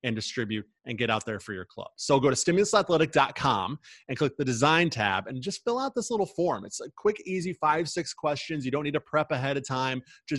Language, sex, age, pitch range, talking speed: English, male, 30-49, 115-155 Hz, 235 wpm